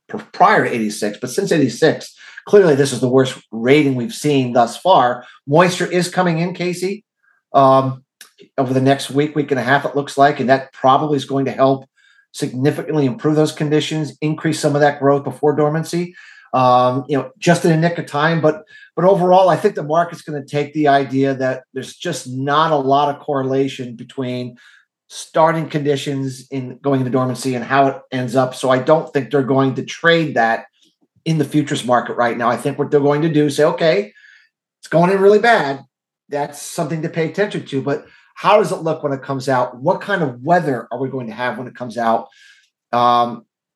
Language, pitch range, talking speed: English, 130-160 Hz, 205 wpm